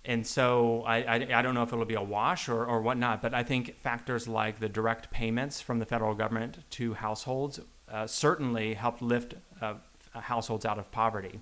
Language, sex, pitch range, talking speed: English, male, 110-120 Hz, 200 wpm